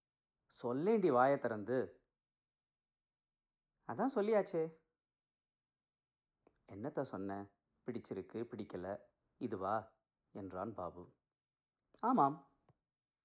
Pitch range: 115-145 Hz